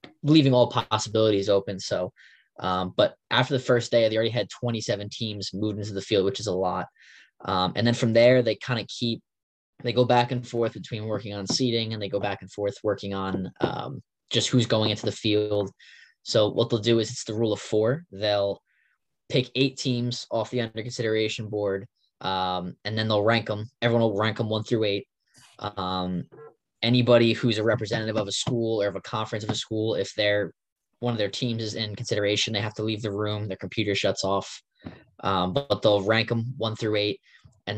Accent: American